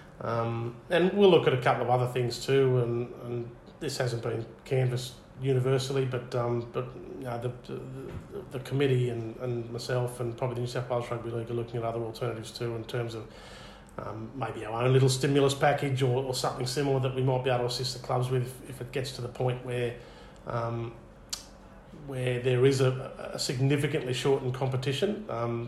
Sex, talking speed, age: male, 200 wpm, 40-59